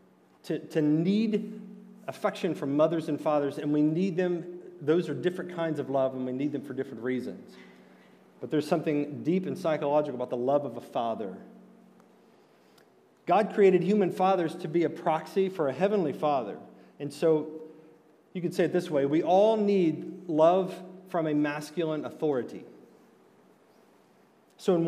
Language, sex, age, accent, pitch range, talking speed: English, male, 40-59, American, 150-190 Hz, 160 wpm